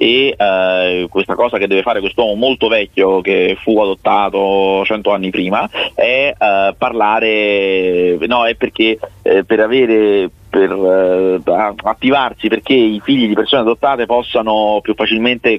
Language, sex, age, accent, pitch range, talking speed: Italian, male, 30-49, native, 100-115 Hz, 140 wpm